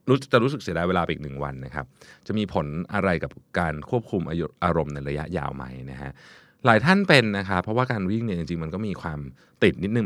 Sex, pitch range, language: male, 75-105 Hz, Thai